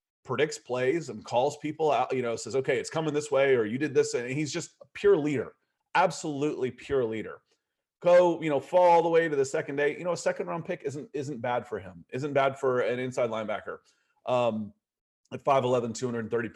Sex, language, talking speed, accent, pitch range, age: male, English, 215 wpm, American, 115-155 Hz, 30-49